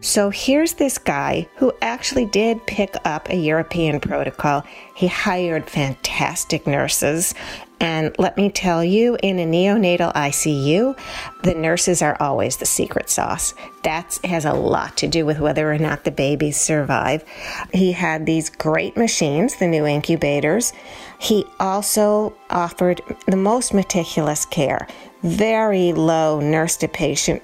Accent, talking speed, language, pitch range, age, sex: American, 140 wpm, English, 155-210 Hz, 40-59, female